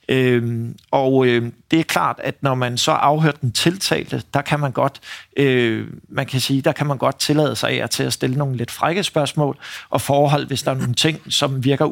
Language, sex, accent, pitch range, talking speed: Danish, male, native, 130-150 Hz, 220 wpm